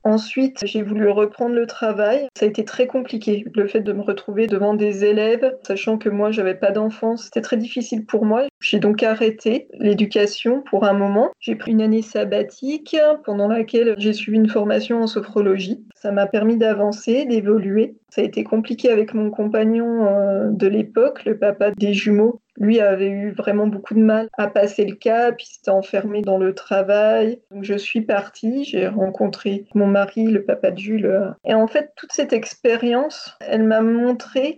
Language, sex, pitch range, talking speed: French, female, 210-240 Hz, 185 wpm